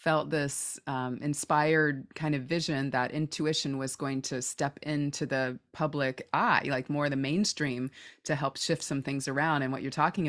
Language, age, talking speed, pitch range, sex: English, 20-39, 180 wpm, 135-155 Hz, female